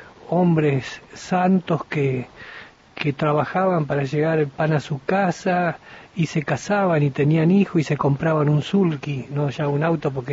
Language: Spanish